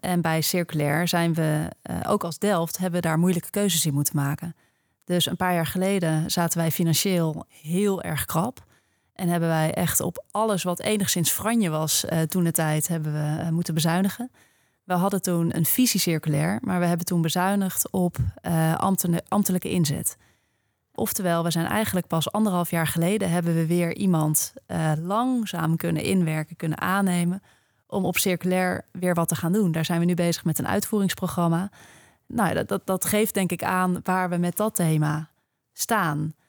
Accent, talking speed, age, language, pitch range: Dutch, 175 wpm, 30-49, Dutch, 165-195 Hz